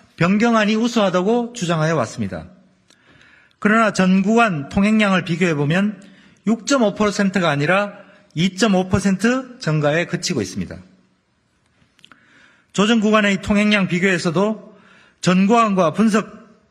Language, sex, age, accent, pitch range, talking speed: English, male, 40-59, Korean, 180-220 Hz, 85 wpm